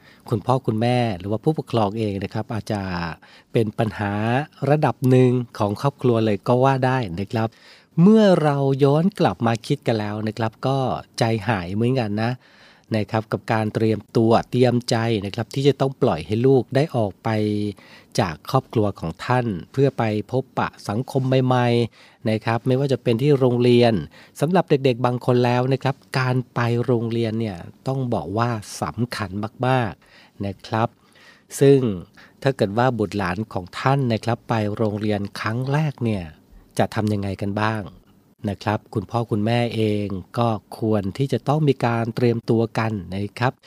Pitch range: 105-130 Hz